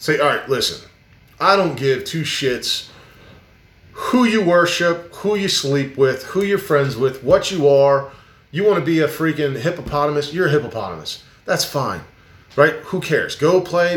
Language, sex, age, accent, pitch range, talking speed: English, male, 30-49, American, 120-175 Hz, 170 wpm